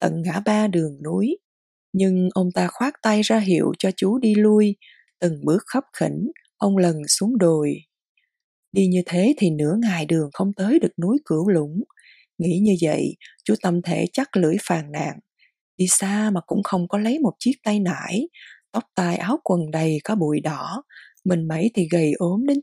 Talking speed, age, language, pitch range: 190 wpm, 20-39, Vietnamese, 175-225 Hz